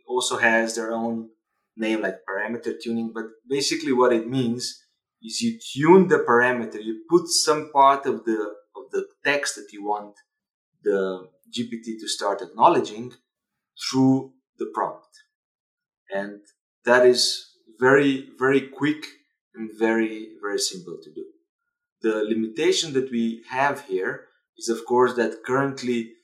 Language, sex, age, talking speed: English, male, 30-49, 140 wpm